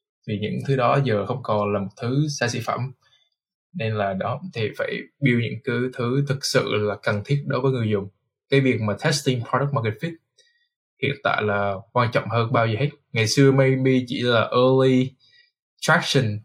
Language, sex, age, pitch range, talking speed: Vietnamese, male, 20-39, 110-130 Hz, 195 wpm